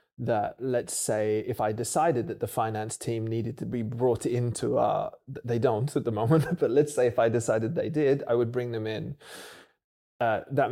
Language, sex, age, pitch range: English, male, 20-39, 115-135 Hz